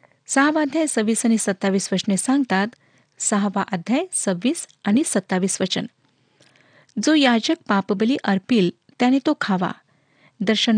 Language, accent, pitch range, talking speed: Marathi, native, 195-250 Hz, 110 wpm